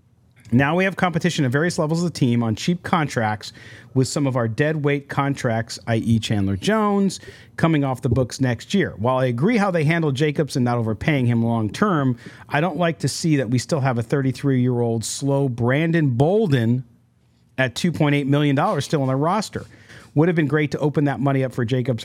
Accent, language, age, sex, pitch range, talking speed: American, English, 40-59, male, 120-155 Hz, 200 wpm